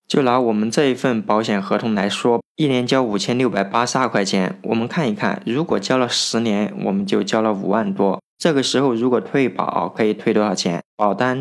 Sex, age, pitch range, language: male, 20-39, 110-140 Hz, Chinese